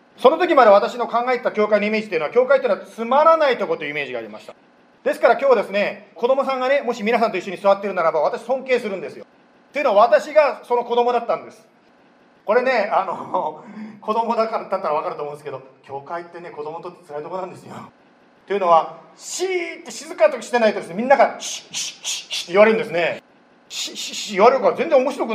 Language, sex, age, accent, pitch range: Japanese, male, 40-59, native, 195-275 Hz